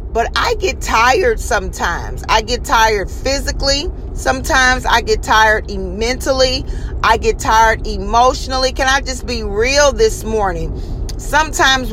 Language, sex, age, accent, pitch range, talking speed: English, female, 40-59, American, 220-265 Hz, 130 wpm